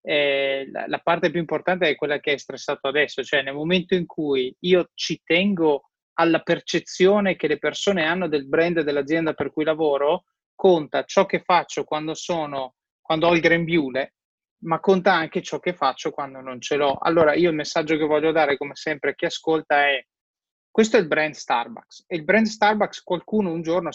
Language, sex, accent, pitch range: Italian, male, native, 140-175 Hz